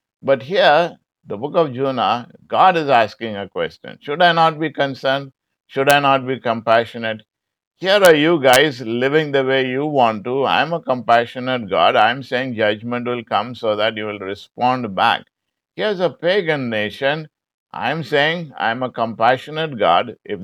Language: English